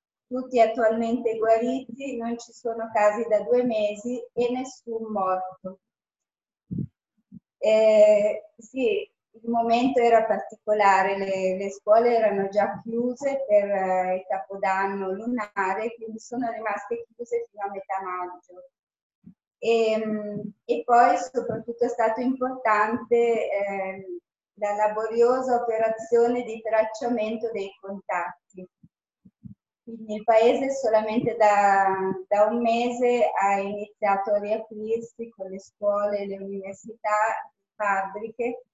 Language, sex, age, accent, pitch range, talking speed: Italian, female, 20-39, native, 200-235 Hz, 110 wpm